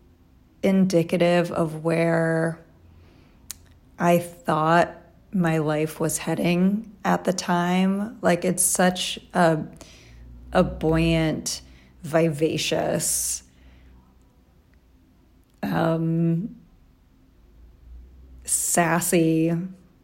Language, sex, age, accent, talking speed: English, female, 30-49, American, 65 wpm